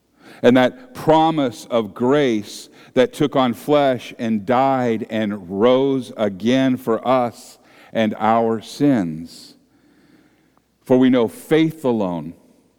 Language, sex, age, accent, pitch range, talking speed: English, male, 50-69, American, 120-165 Hz, 115 wpm